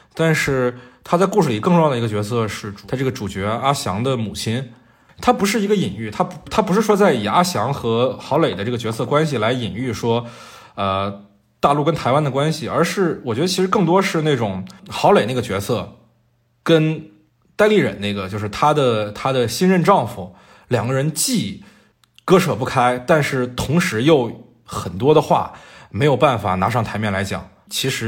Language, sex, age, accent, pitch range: Chinese, male, 20-39, native, 105-155 Hz